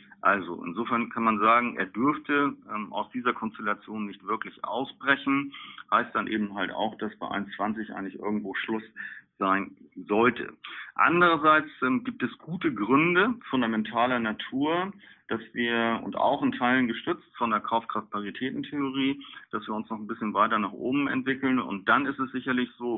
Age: 40-59